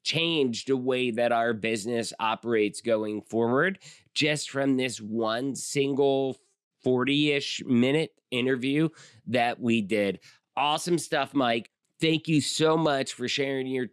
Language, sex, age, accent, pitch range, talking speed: English, male, 30-49, American, 120-150 Hz, 135 wpm